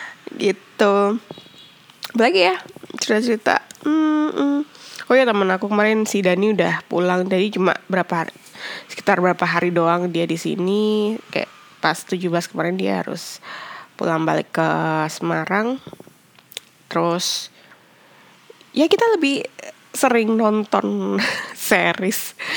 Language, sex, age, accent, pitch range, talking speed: Indonesian, female, 20-39, native, 175-225 Hz, 110 wpm